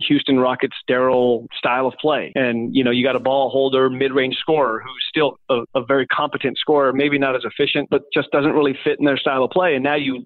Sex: male